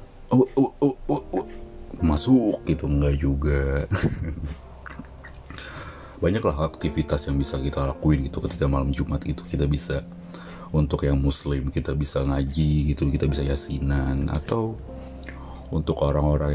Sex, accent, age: male, native, 30-49